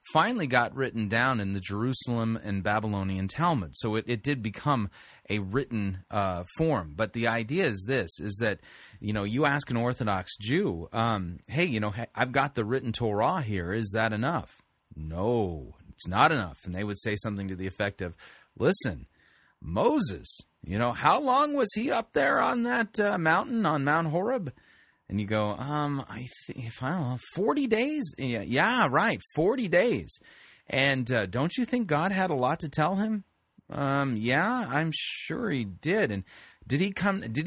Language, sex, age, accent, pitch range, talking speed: English, male, 30-49, American, 105-150 Hz, 185 wpm